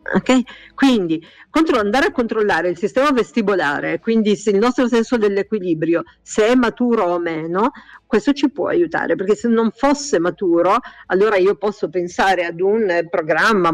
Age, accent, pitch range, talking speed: 50-69, native, 180-225 Hz, 155 wpm